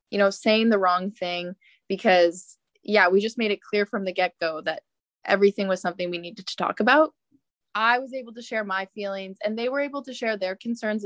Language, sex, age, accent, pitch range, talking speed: English, female, 20-39, American, 185-225 Hz, 215 wpm